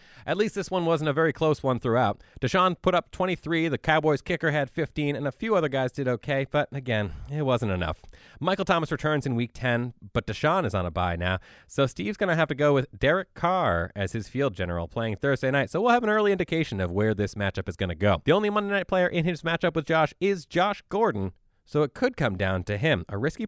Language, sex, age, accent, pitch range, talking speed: English, male, 30-49, American, 110-170 Hz, 250 wpm